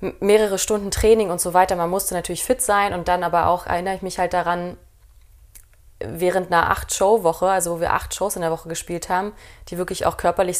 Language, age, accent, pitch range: German, 20-39, German, 170-195 Hz